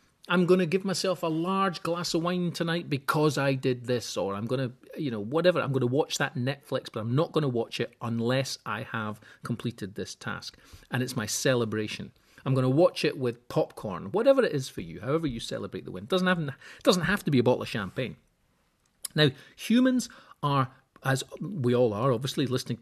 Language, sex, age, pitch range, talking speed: English, male, 40-59, 120-160 Hz, 220 wpm